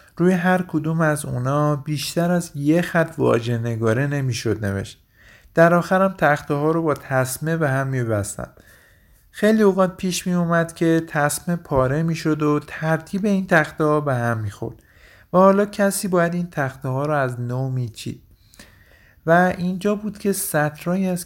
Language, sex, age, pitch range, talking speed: Persian, male, 50-69, 120-160 Hz, 160 wpm